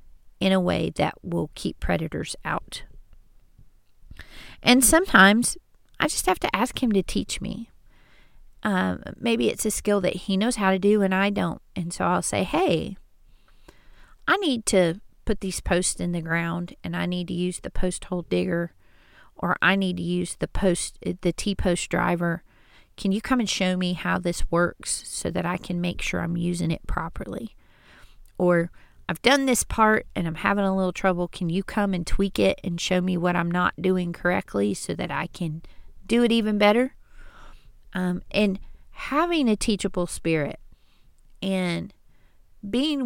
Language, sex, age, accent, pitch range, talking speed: English, female, 40-59, American, 175-215 Hz, 175 wpm